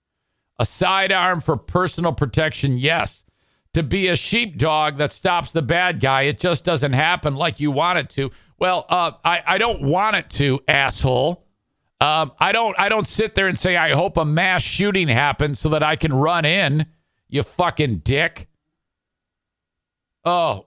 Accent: American